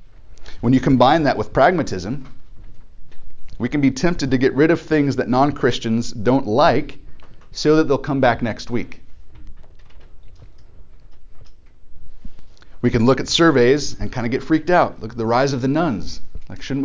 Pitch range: 100-135 Hz